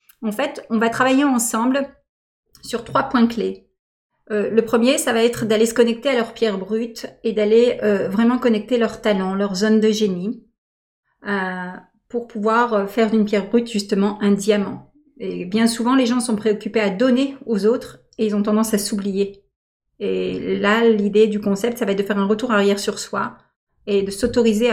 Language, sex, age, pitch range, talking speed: French, female, 40-59, 205-235 Hz, 190 wpm